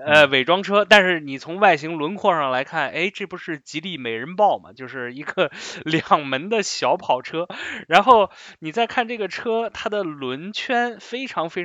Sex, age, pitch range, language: male, 20-39, 130-180 Hz, Chinese